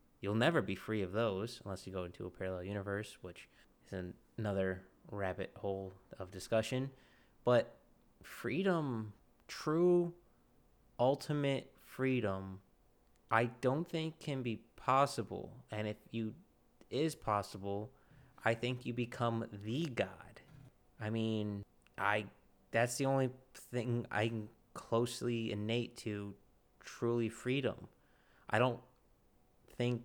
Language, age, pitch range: English, 20-39, 100-120 Hz